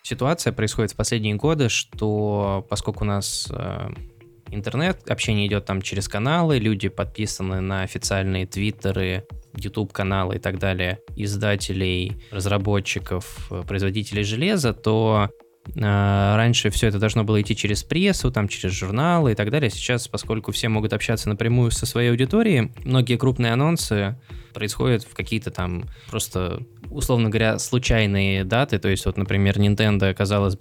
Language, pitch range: Russian, 100-115 Hz